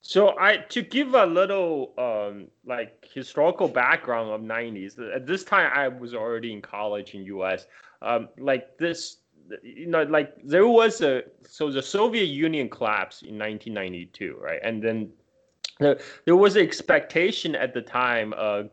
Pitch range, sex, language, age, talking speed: 115-150 Hz, male, English, 20-39, 155 wpm